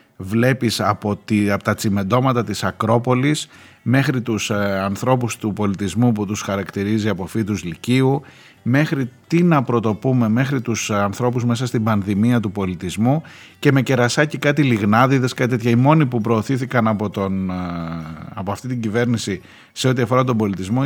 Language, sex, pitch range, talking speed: Greek, male, 110-145 Hz, 155 wpm